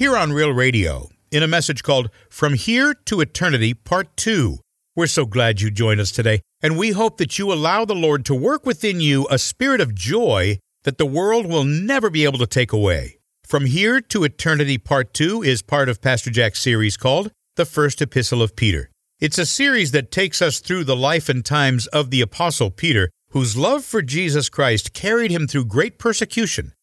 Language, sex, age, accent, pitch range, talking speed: English, male, 50-69, American, 120-175 Hz, 200 wpm